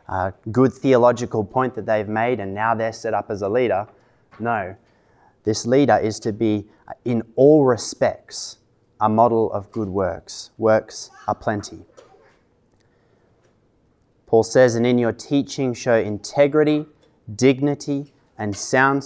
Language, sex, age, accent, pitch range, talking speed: English, male, 20-39, Australian, 105-125 Hz, 135 wpm